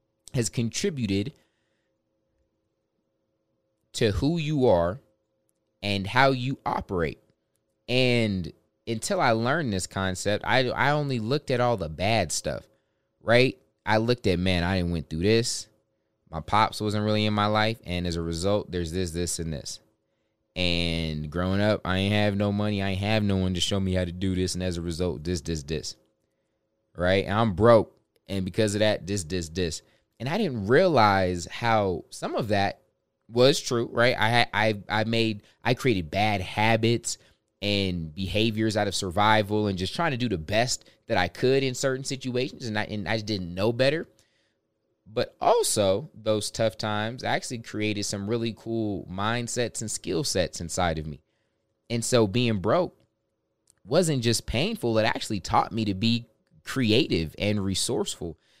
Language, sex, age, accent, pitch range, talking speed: English, male, 20-39, American, 95-115 Hz, 170 wpm